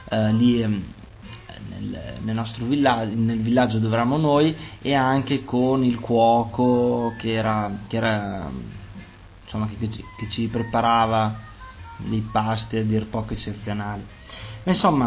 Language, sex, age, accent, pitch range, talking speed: Italian, male, 20-39, native, 110-145 Hz, 140 wpm